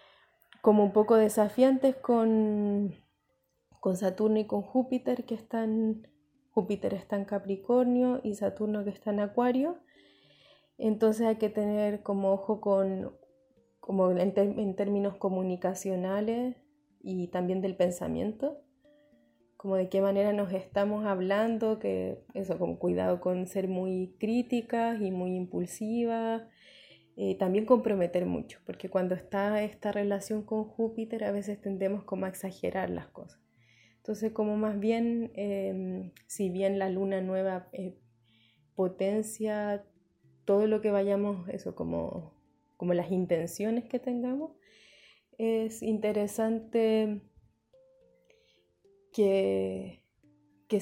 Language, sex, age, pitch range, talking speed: Spanish, female, 20-39, 185-225 Hz, 120 wpm